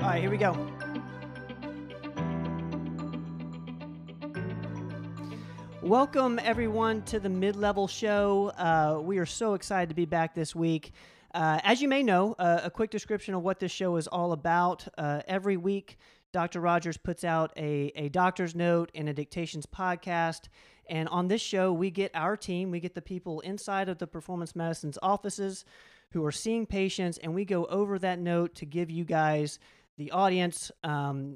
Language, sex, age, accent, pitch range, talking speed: English, male, 40-59, American, 155-195 Hz, 165 wpm